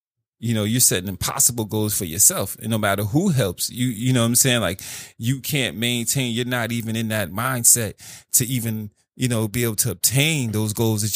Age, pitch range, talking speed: 20-39, 100-120 Hz, 215 wpm